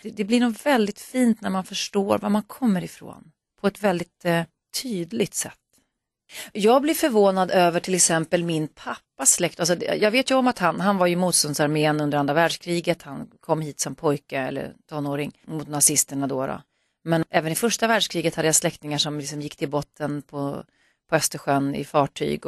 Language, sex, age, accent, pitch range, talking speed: Swedish, female, 30-49, native, 150-190 Hz, 185 wpm